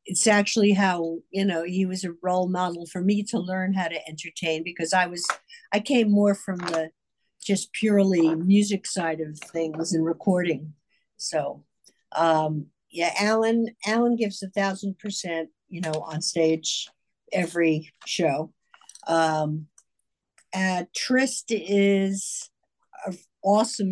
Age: 60-79